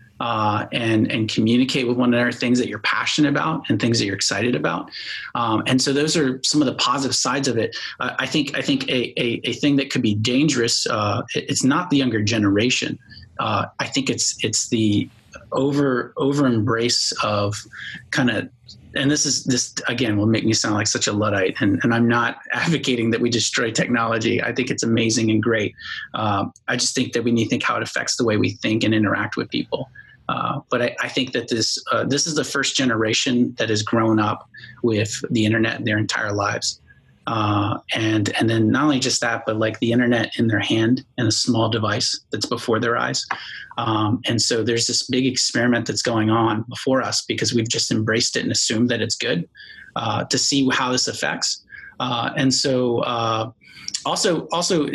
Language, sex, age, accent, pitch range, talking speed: English, male, 30-49, American, 110-130 Hz, 205 wpm